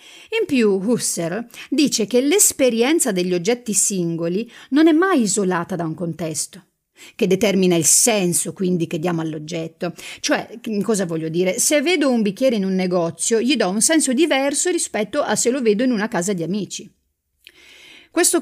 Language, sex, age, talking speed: Italian, female, 40-59, 165 wpm